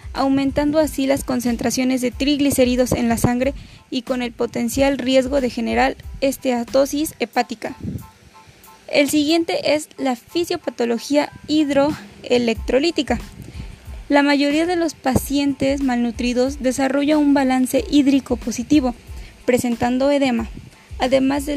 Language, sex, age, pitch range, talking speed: Spanish, female, 20-39, 245-290 Hz, 110 wpm